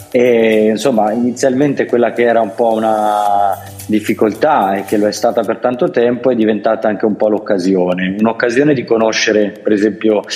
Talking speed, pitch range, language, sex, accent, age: 170 wpm, 100-120 Hz, Italian, male, native, 30-49